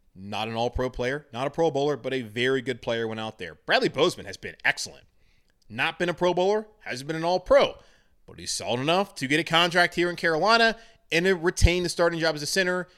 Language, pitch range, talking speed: English, 140-190 Hz, 230 wpm